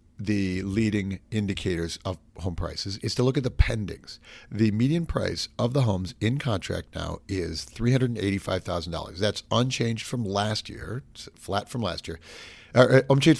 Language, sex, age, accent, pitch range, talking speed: English, male, 40-59, American, 95-120 Hz, 150 wpm